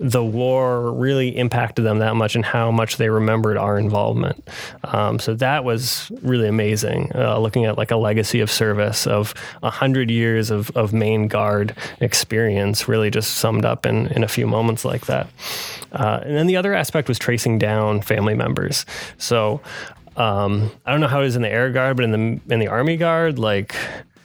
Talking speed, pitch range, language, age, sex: 195 wpm, 105-120 Hz, English, 20-39, male